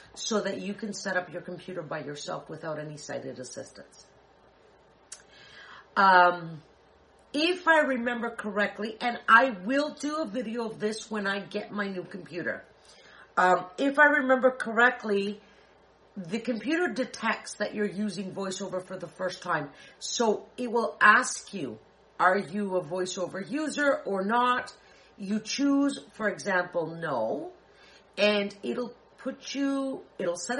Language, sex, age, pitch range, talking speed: English, female, 50-69, 180-245 Hz, 140 wpm